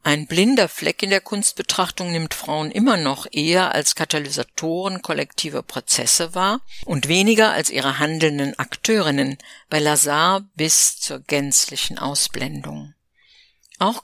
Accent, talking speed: German, 125 wpm